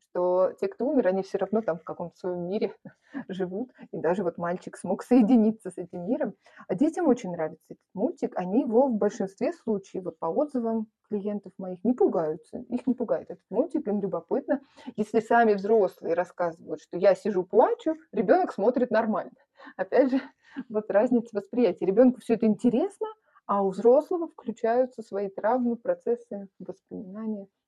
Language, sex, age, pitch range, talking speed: Russian, female, 30-49, 185-245 Hz, 165 wpm